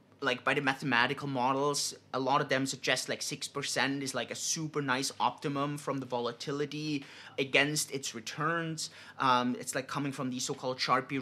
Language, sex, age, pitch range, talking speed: English, male, 30-49, 130-155 Hz, 170 wpm